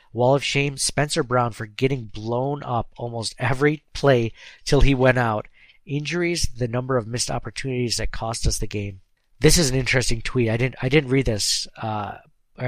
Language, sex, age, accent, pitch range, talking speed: English, male, 50-69, American, 115-140 Hz, 185 wpm